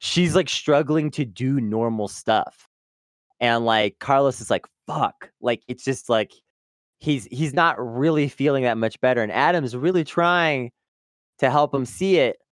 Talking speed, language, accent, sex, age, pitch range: 165 wpm, English, American, male, 30-49, 110-150 Hz